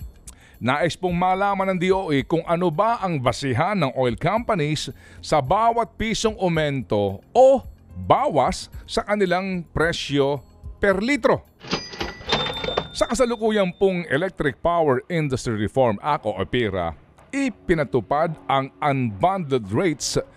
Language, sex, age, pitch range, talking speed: Filipino, male, 50-69, 125-190 Hz, 110 wpm